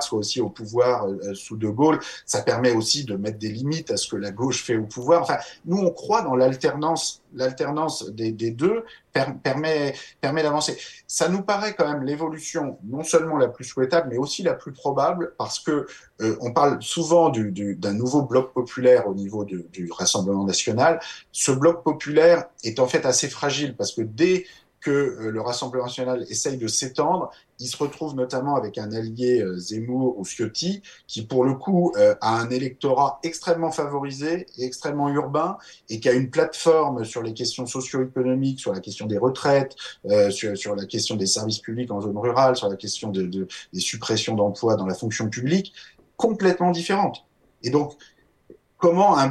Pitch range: 110-155 Hz